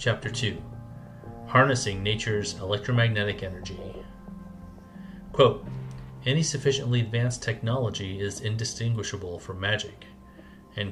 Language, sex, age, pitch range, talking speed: English, male, 30-49, 95-120 Hz, 90 wpm